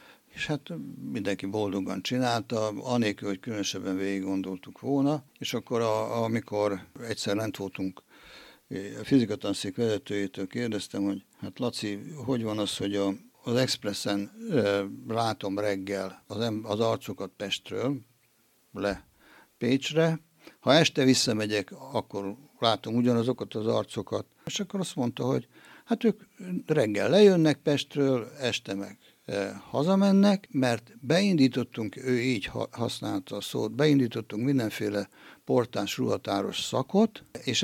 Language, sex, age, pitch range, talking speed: Hungarian, male, 60-79, 100-135 Hz, 110 wpm